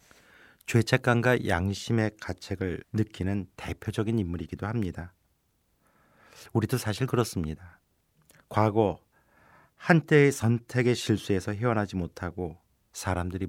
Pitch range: 85-110 Hz